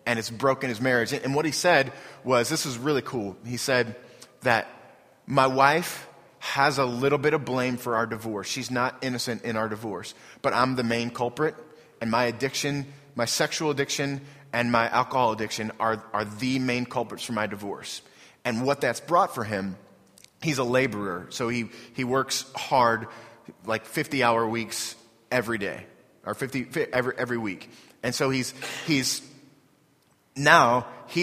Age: 30-49